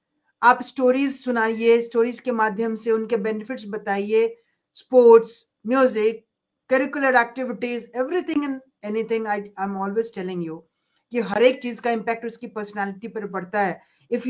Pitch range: 215-260 Hz